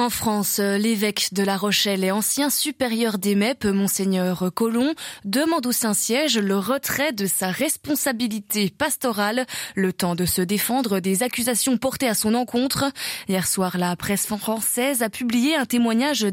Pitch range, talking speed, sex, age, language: 195-250 Hz, 155 wpm, female, 20-39, French